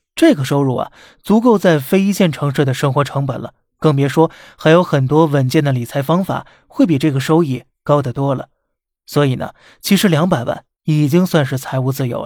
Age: 20-39